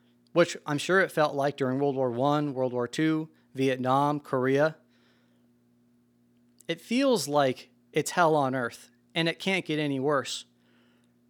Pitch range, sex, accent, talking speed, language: 120-190 Hz, male, American, 150 wpm, English